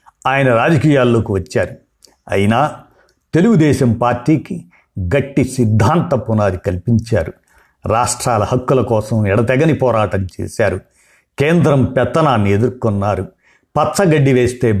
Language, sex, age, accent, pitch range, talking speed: Telugu, male, 50-69, native, 110-140 Hz, 85 wpm